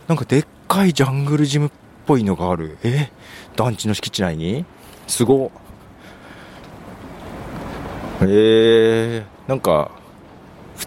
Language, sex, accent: Japanese, male, native